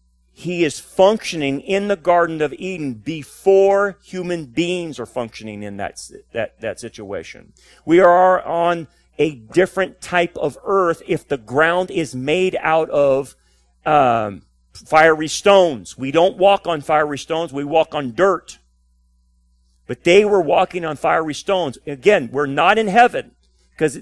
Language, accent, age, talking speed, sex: English, American, 40-59, 145 wpm, male